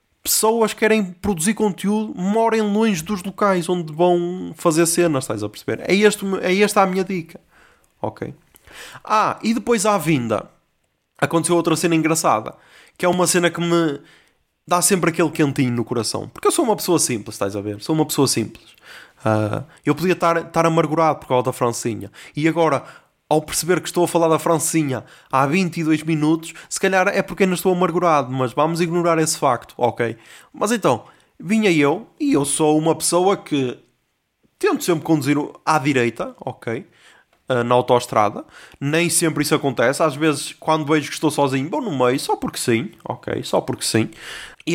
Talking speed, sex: 180 wpm, male